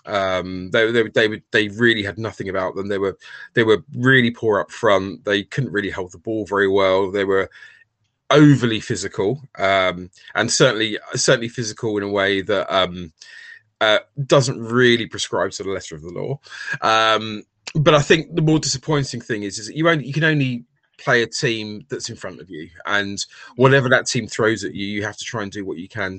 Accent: British